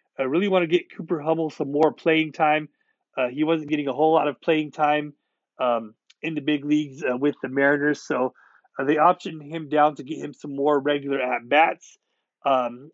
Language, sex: English, male